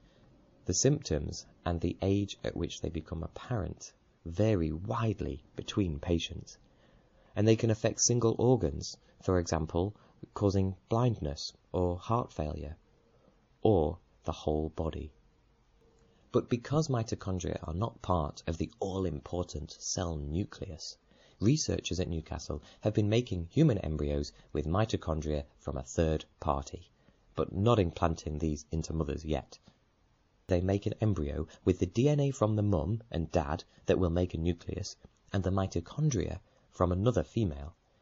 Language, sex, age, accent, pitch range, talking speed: English, male, 30-49, British, 80-110 Hz, 135 wpm